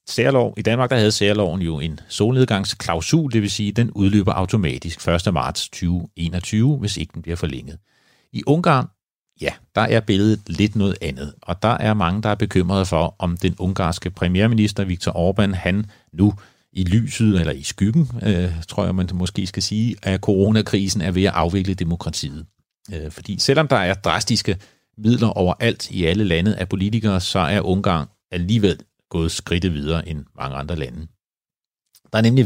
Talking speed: 175 wpm